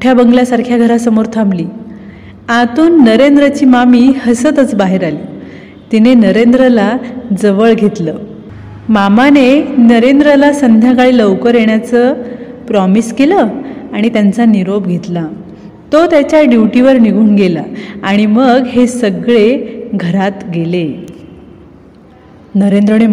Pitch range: 215-275 Hz